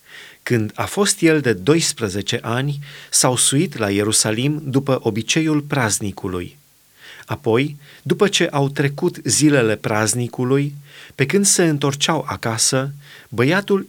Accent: native